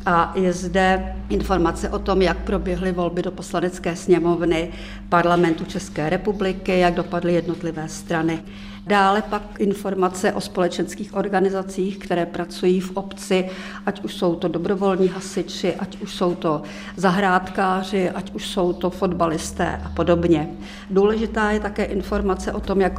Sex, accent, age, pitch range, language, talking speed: female, native, 50-69, 175-200 Hz, Czech, 140 wpm